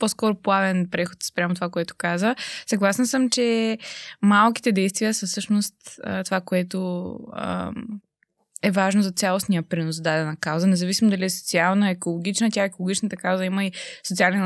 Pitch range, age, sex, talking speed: 175-220 Hz, 20-39, female, 140 wpm